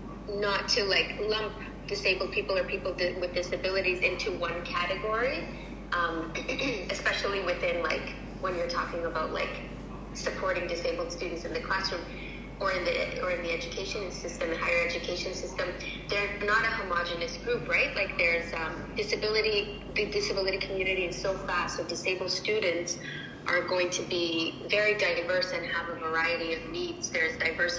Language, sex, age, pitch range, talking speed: English, female, 20-39, 170-195 Hz, 155 wpm